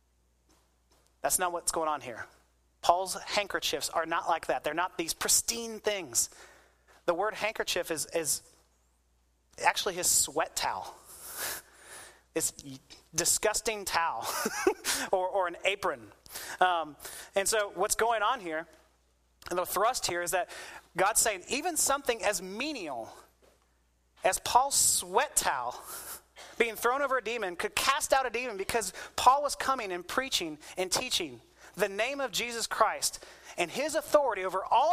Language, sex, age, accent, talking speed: English, male, 30-49, American, 145 wpm